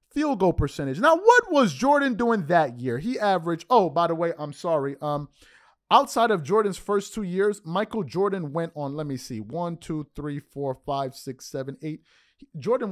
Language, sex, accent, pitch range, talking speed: English, male, American, 155-230 Hz, 190 wpm